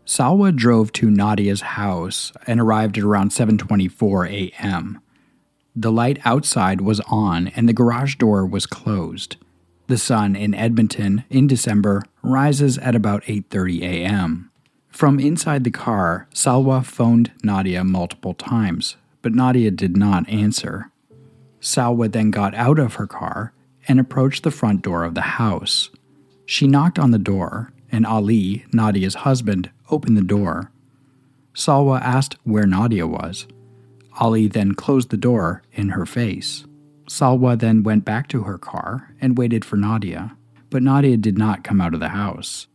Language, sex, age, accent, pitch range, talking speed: English, male, 40-59, American, 100-130 Hz, 150 wpm